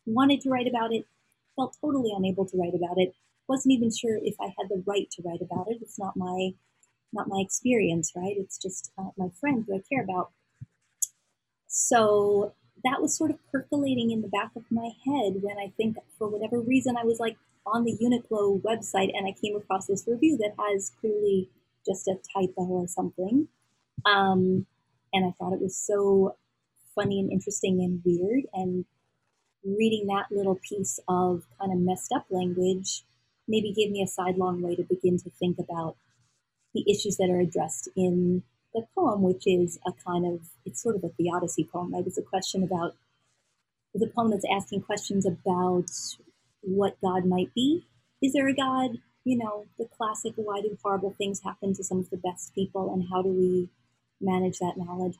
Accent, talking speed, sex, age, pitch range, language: American, 185 wpm, female, 30-49, 180-220 Hz, English